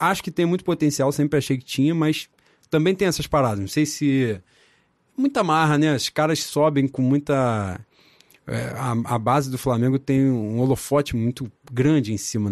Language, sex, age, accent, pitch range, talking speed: Portuguese, male, 20-39, Brazilian, 125-155 Hz, 175 wpm